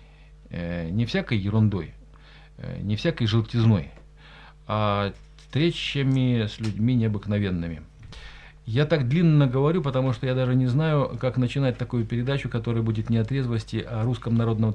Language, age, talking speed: Russian, 40-59, 140 wpm